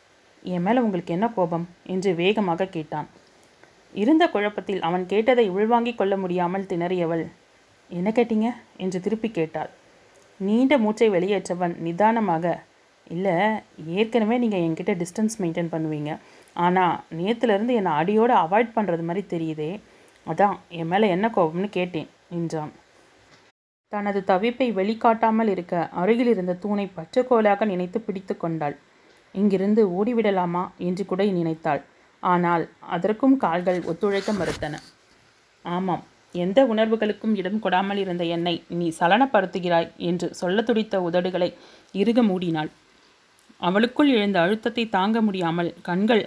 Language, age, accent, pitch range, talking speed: Tamil, 30-49, native, 175-215 Hz, 115 wpm